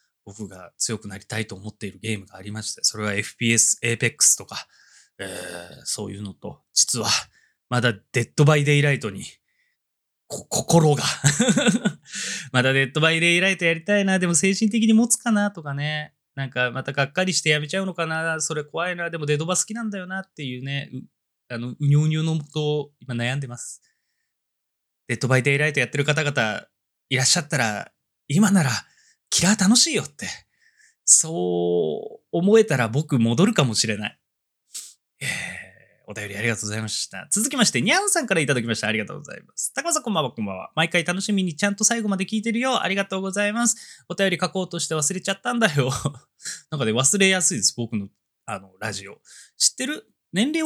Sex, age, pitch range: male, 20-39, 125-195 Hz